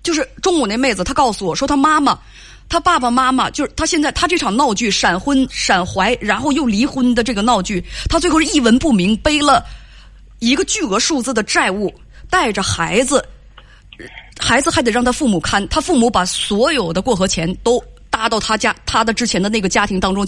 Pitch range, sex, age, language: 205-290 Hz, female, 20-39, Chinese